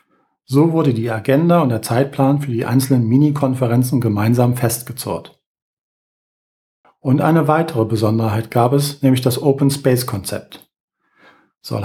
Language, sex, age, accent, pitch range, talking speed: German, male, 40-59, German, 120-145 Hz, 120 wpm